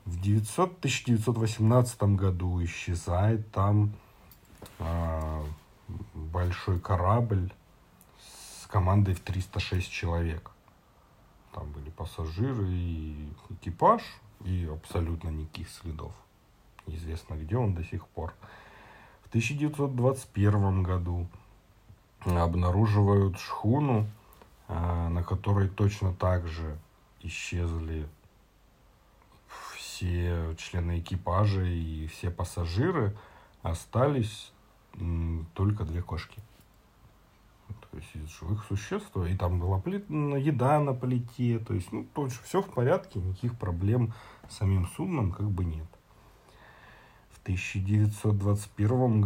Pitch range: 90-110 Hz